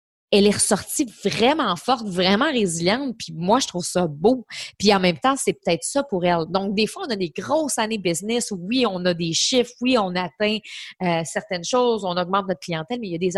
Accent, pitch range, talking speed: Canadian, 185-245 Hz, 230 wpm